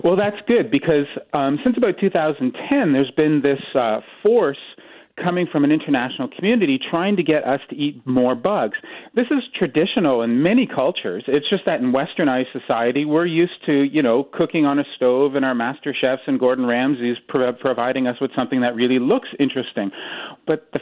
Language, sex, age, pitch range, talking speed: English, male, 40-59, 135-195 Hz, 185 wpm